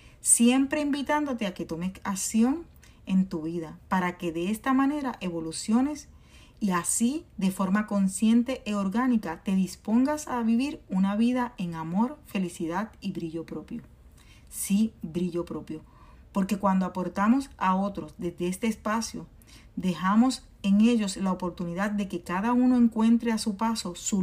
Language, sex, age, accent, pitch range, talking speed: Spanish, female, 40-59, American, 180-235 Hz, 145 wpm